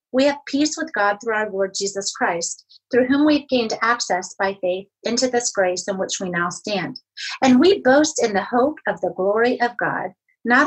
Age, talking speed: 30-49, 210 wpm